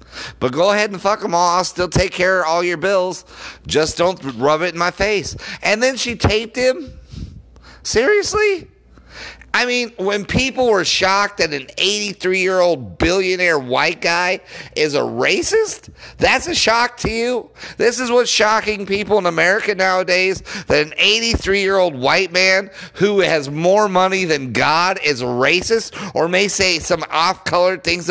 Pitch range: 135-215 Hz